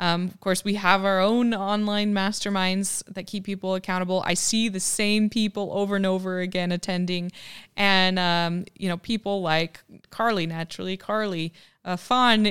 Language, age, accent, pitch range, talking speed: English, 20-39, American, 180-210 Hz, 165 wpm